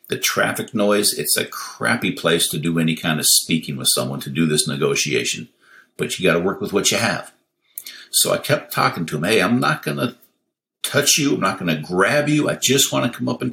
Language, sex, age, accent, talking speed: English, male, 50-69, American, 240 wpm